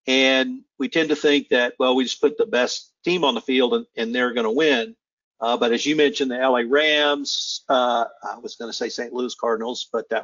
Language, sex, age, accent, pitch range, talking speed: English, male, 50-69, American, 120-145 Hz, 235 wpm